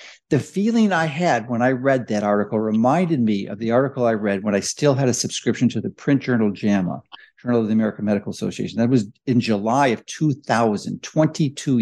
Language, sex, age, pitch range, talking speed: English, male, 60-79, 115-175 Hz, 205 wpm